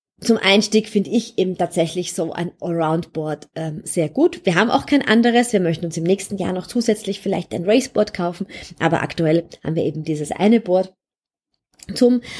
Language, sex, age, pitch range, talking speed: German, female, 20-39, 165-200 Hz, 185 wpm